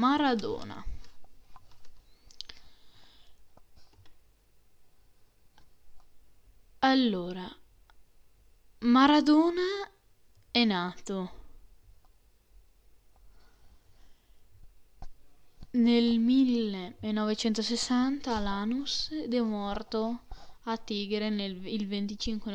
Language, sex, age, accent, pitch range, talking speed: Italian, female, 10-29, native, 200-245 Hz, 40 wpm